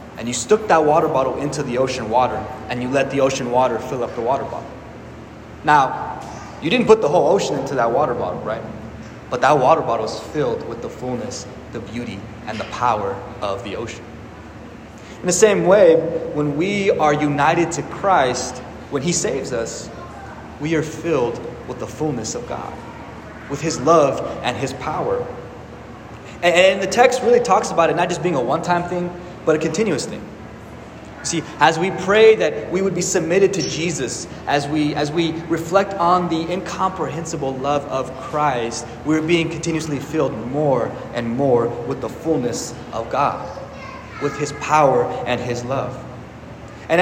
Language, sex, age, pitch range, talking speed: English, male, 20-39, 125-175 Hz, 170 wpm